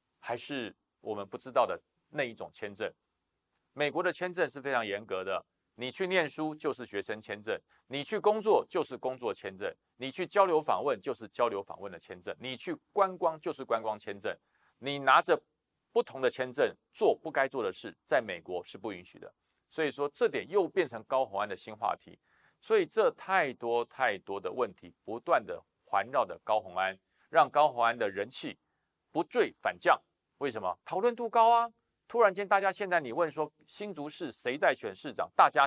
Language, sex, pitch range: Chinese, male, 135-225 Hz